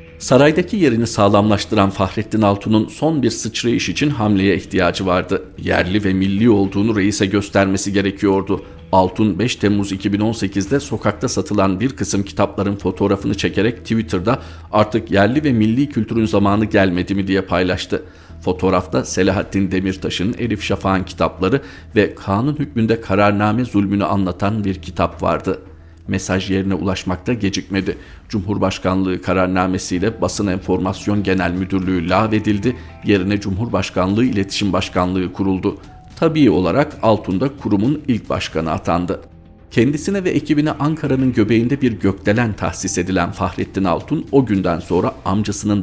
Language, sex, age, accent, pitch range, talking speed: Turkish, male, 50-69, native, 95-110 Hz, 125 wpm